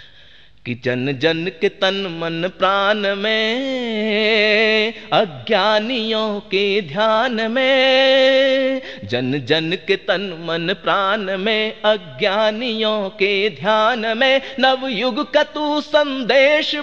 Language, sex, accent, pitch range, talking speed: Hindi, male, native, 165-265 Hz, 95 wpm